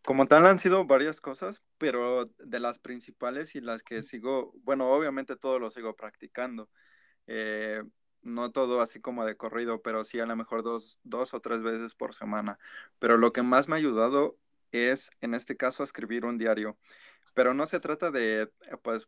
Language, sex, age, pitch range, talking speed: Spanish, male, 20-39, 115-130 Hz, 185 wpm